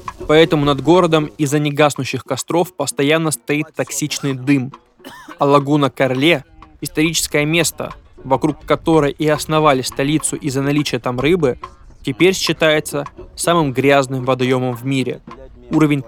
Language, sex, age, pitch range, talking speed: Russian, male, 20-39, 135-155 Hz, 120 wpm